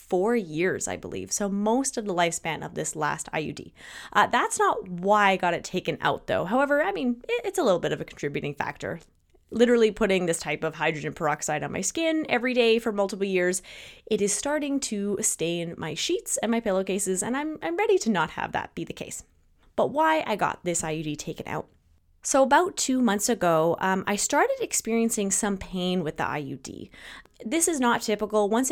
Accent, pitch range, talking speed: American, 180-245 Hz, 205 wpm